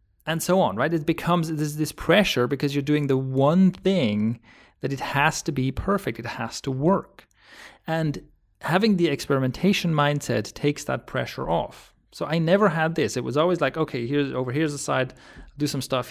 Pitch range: 130-165 Hz